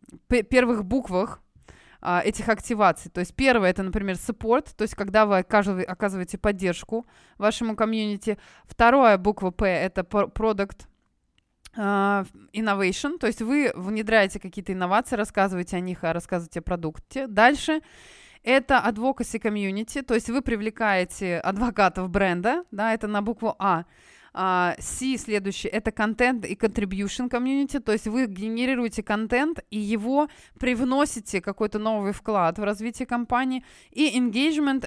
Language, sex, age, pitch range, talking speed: Russian, female, 20-39, 195-240 Hz, 130 wpm